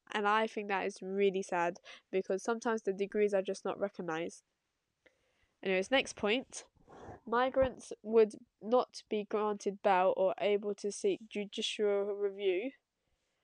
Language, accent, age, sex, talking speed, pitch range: English, British, 10-29, female, 135 wpm, 195-240 Hz